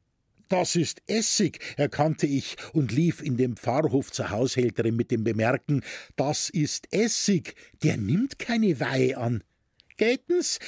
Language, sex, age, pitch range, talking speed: German, male, 60-79, 120-175 Hz, 135 wpm